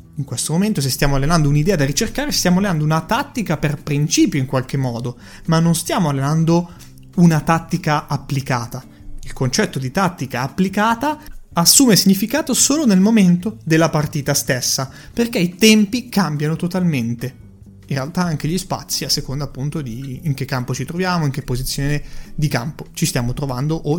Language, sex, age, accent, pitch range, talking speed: Italian, male, 30-49, native, 140-185 Hz, 165 wpm